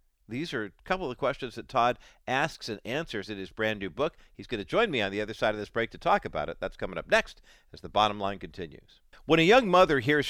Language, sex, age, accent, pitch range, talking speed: English, male, 50-69, American, 110-155 Hz, 270 wpm